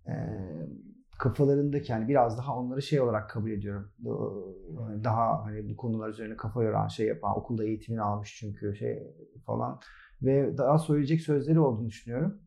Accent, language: native, Turkish